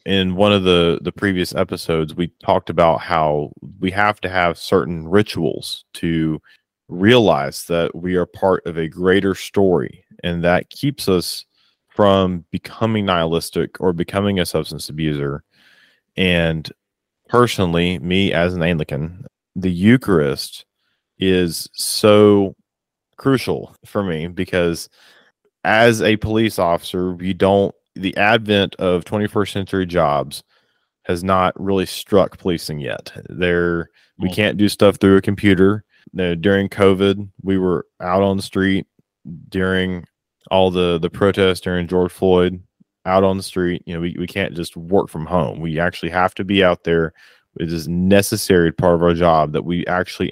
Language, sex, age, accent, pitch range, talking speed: English, male, 30-49, American, 85-100 Hz, 150 wpm